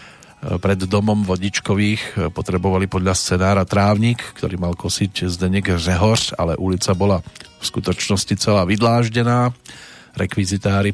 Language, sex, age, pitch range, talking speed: Slovak, male, 40-59, 90-105 Hz, 110 wpm